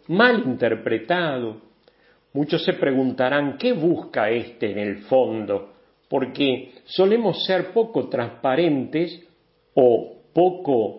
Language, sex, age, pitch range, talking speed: English, male, 50-69, 125-185 Hz, 100 wpm